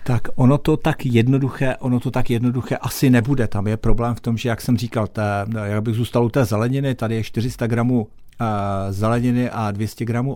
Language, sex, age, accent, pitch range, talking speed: Czech, male, 50-69, native, 110-125 Hz, 195 wpm